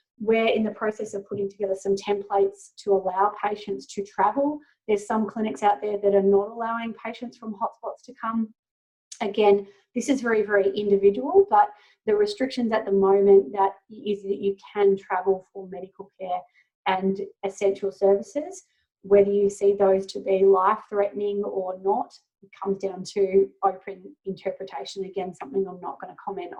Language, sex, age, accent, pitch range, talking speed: English, female, 30-49, Australian, 195-225 Hz, 165 wpm